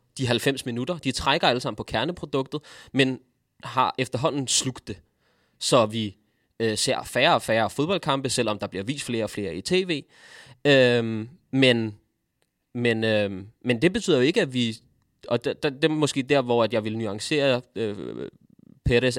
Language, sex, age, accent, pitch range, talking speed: Danish, male, 20-39, native, 110-135 Hz, 170 wpm